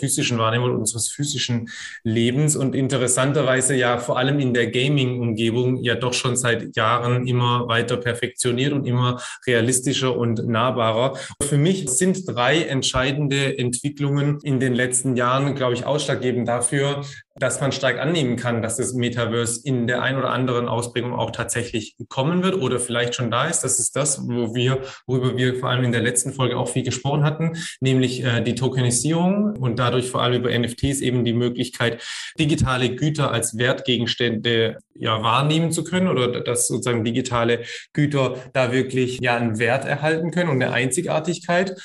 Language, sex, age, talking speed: German, male, 20-39, 165 wpm